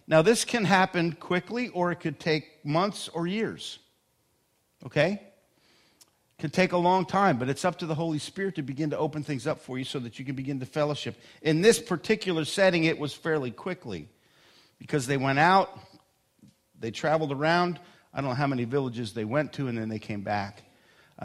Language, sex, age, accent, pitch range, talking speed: English, male, 50-69, American, 130-175 Hz, 200 wpm